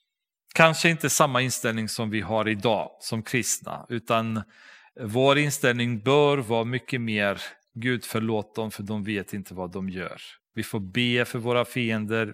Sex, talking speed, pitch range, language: male, 160 wpm, 105-140 Hz, Swedish